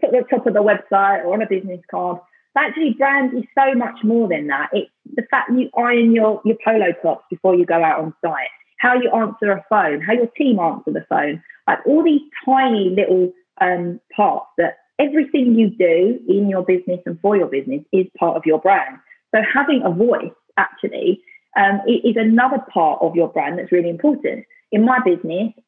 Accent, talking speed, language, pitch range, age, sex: British, 205 wpm, English, 180-255 Hz, 30-49, female